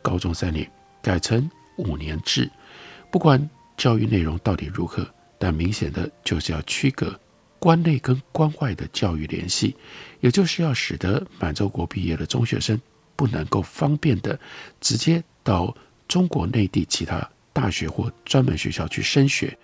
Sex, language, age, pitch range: male, Chinese, 60-79, 90-150 Hz